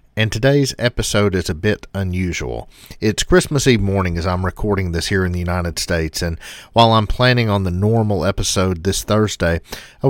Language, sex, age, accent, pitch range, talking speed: English, male, 40-59, American, 85-110 Hz, 185 wpm